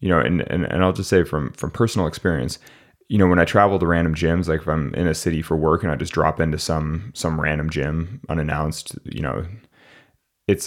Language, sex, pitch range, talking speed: English, male, 80-100 Hz, 230 wpm